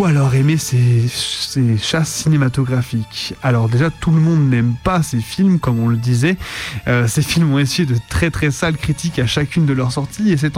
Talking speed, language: 205 wpm, French